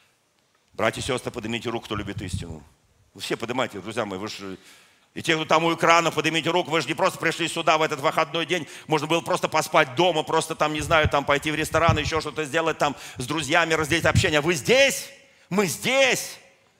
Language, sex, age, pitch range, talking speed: Russian, male, 50-69, 135-220 Hz, 205 wpm